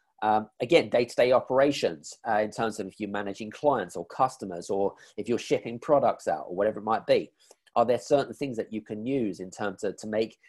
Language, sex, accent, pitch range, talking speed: English, male, British, 100-135 Hz, 215 wpm